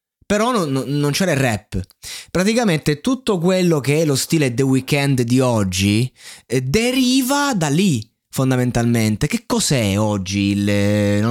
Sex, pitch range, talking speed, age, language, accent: male, 110-145 Hz, 145 wpm, 20-39, Italian, native